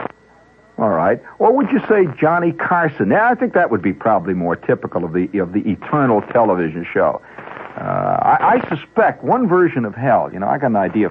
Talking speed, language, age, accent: 210 wpm, English, 60-79, American